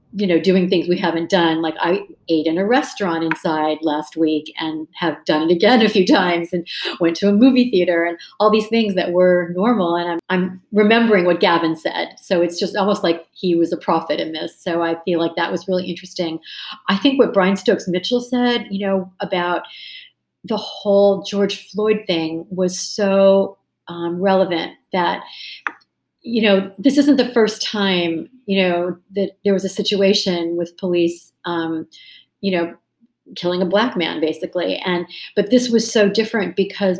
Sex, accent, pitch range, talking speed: female, American, 170-205 Hz, 185 wpm